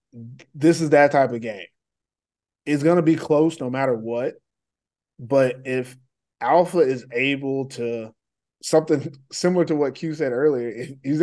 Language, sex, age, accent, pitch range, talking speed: English, male, 20-39, American, 125-160 Hz, 155 wpm